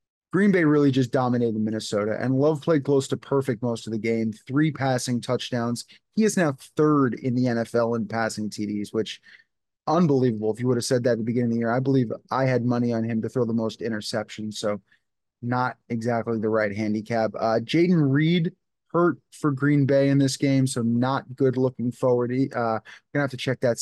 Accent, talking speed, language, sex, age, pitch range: American, 205 wpm, English, male, 20-39, 115-135 Hz